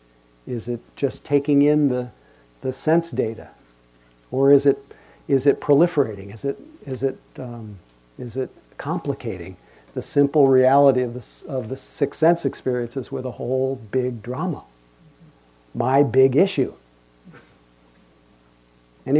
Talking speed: 130 wpm